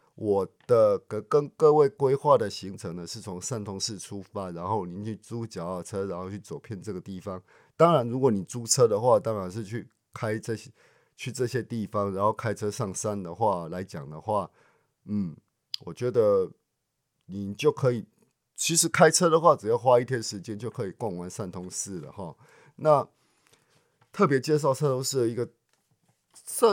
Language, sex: Chinese, male